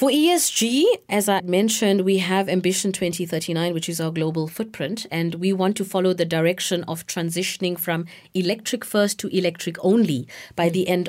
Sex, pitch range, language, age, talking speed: female, 175-225 Hz, English, 30-49, 175 wpm